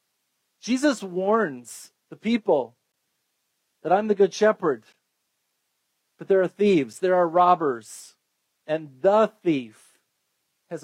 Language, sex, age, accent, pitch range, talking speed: English, male, 40-59, American, 165-205 Hz, 110 wpm